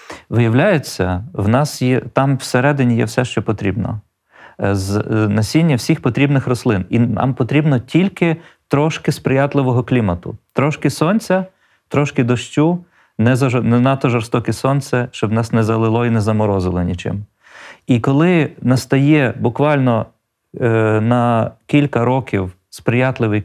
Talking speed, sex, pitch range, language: 130 wpm, male, 105-130 Hz, Ukrainian